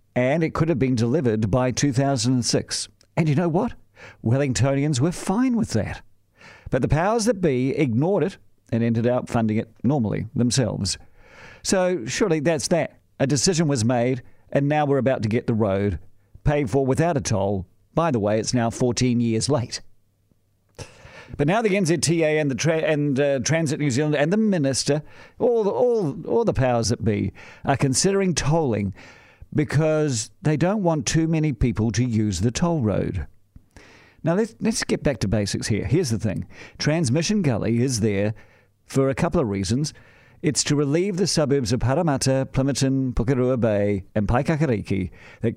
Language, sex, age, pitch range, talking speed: English, male, 50-69, 110-150 Hz, 175 wpm